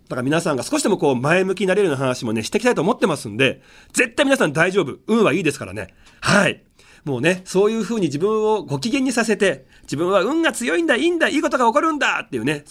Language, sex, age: Japanese, male, 40-59